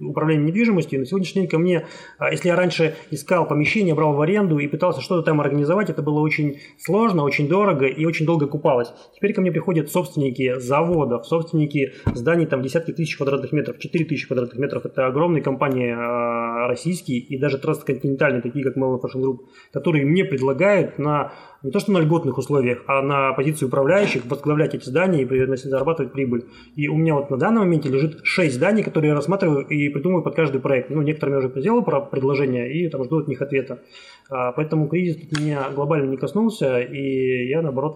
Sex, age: male, 20-39